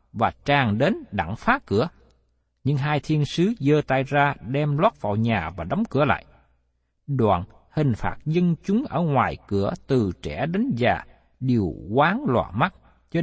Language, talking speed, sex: Vietnamese, 170 wpm, male